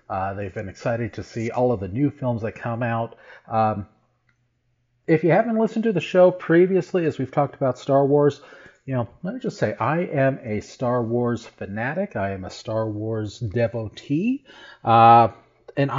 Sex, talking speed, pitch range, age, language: male, 185 wpm, 110-145 Hz, 40-59, English